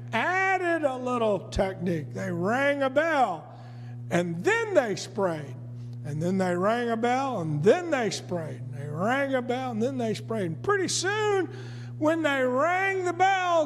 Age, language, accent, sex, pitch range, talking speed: 50-69, English, American, male, 155-255 Hz, 165 wpm